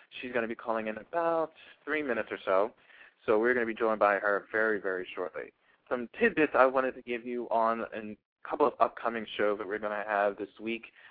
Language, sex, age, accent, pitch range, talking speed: English, male, 20-39, American, 105-125 Hz, 225 wpm